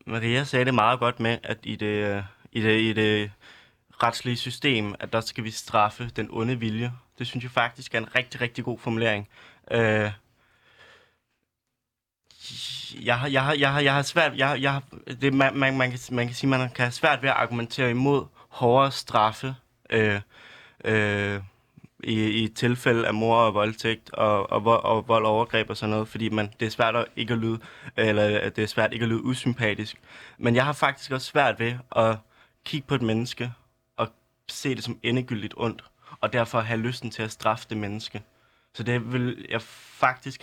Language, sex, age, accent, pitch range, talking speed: Danish, male, 20-39, native, 110-125 Hz, 190 wpm